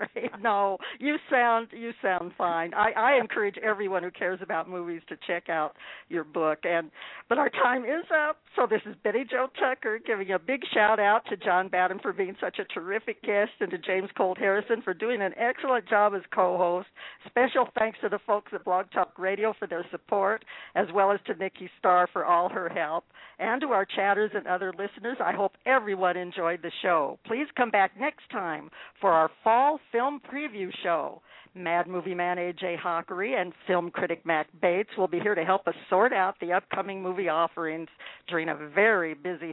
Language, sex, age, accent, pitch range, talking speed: English, female, 60-79, American, 175-230 Hz, 195 wpm